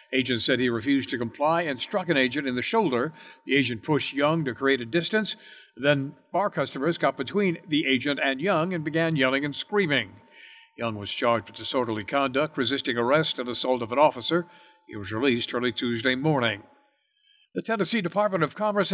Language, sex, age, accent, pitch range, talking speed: English, male, 60-79, American, 125-170 Hz, 185 wpm